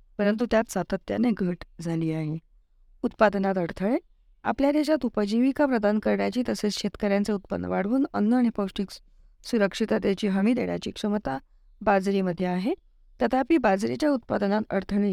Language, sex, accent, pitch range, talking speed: Marathi, female, native, 180-225 Hz, 120 wpm